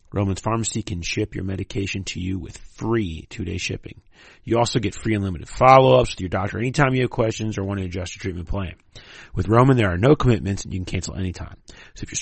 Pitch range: 95-125 Hz